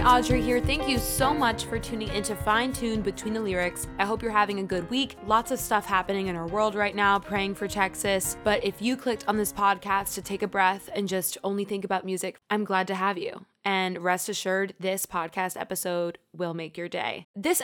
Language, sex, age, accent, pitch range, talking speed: English, female, 20-39, American, 185-215 Hz, 225 wpm